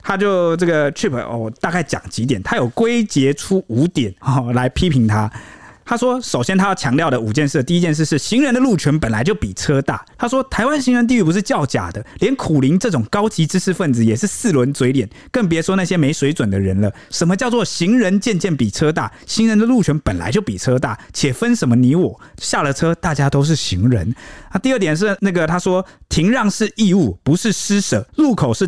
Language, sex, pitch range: Chinese, male, 125-205 Hz